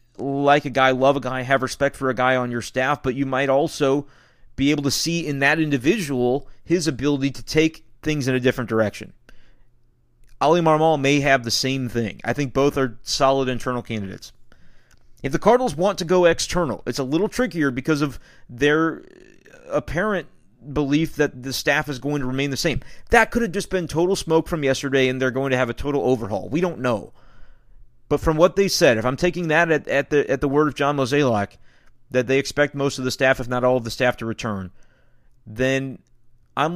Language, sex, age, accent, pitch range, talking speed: English, male, 30-49, American, 125-150 Hz, 210 wpm